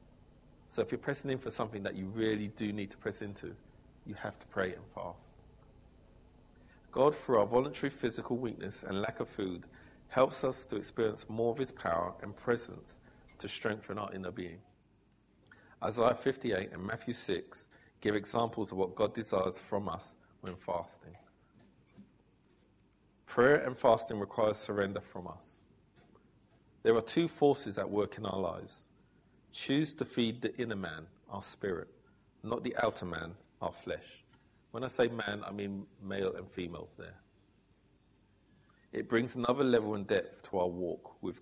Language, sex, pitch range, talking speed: English, male, 100-125 Hz, 160 wpm